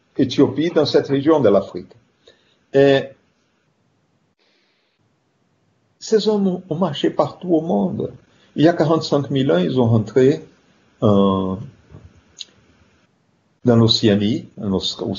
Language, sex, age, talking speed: Italian, male, 50-69, 110 wpm